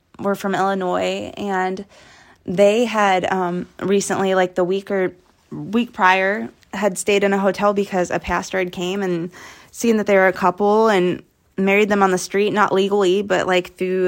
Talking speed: 180 wpm